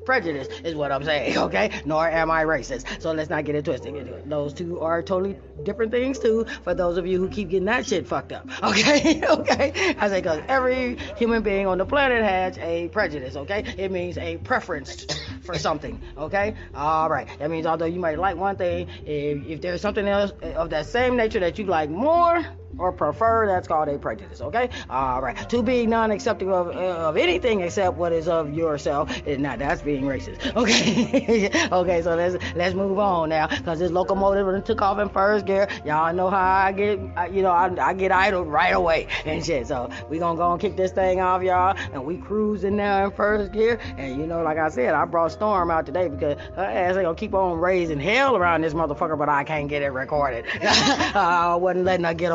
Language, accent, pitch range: English, American, 160-205 Hz